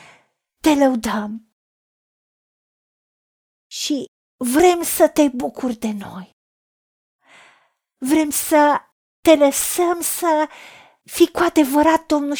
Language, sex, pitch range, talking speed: Romanian, female, 225-310 Hz, 85 wpm